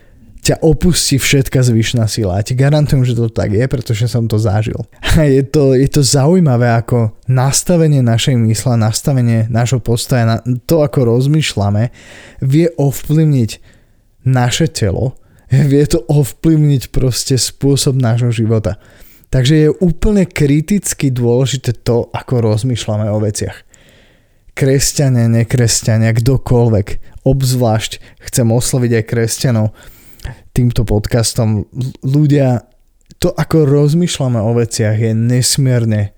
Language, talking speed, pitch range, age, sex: Slovak, 110 wpm, 110-135 Hz, 20-39, male